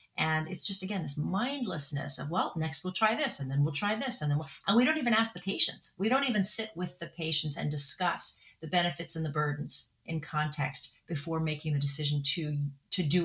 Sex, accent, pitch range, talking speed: female, American, 150-195 Hz, 225 wpm